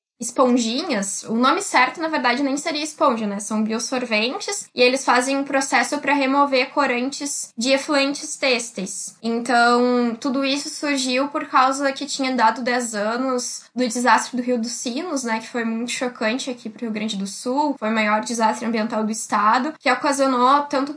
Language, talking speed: Portuguese, 175 wpm